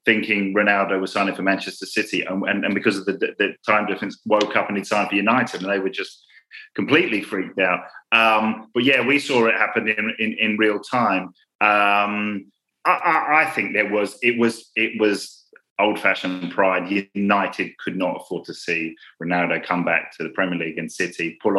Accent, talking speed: British, 205 wpm